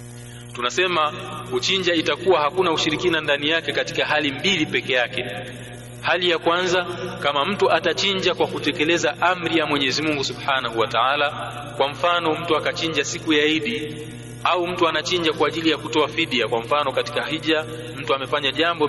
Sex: male